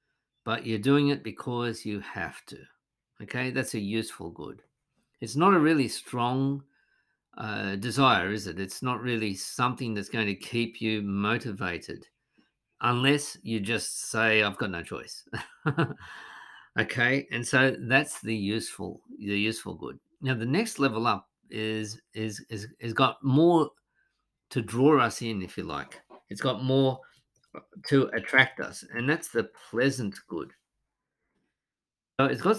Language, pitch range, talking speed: English, 110-135 Hz, 150 wpm